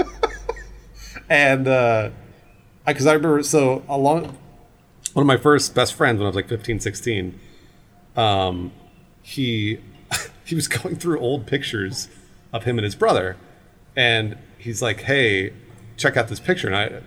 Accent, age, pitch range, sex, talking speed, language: American, 30-49, 115-160 Hz, male, 150 wpm, English